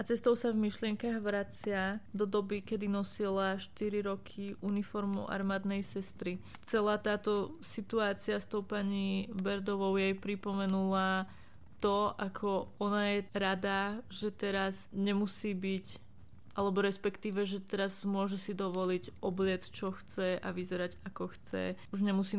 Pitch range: 185-205 Hz